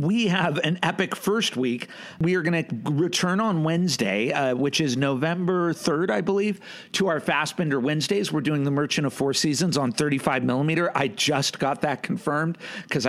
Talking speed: 185 wpm